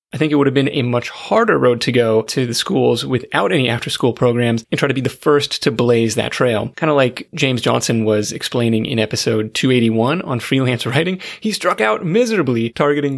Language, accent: English, American